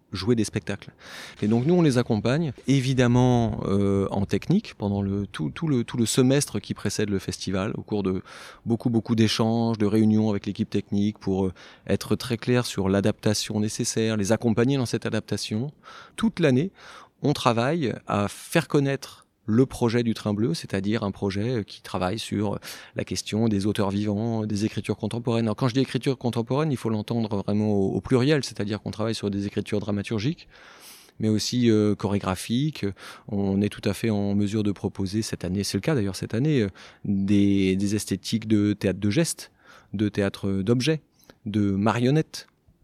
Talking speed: 180 wpm